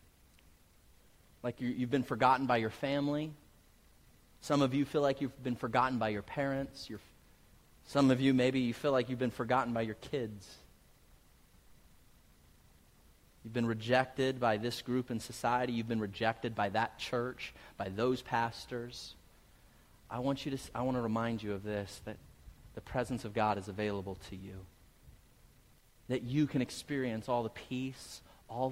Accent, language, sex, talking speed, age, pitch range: American, English, male, 165 wpm, 30-49, 100-125 Hz